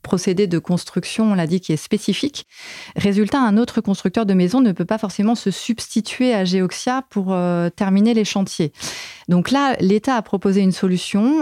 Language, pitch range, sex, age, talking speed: French, 175-220 Hz, female, 30-49, 185 wpm